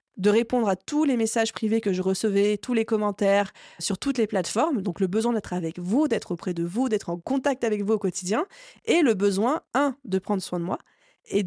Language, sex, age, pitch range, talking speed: French, female, 20-39, 195-245 Hz, 230 wpm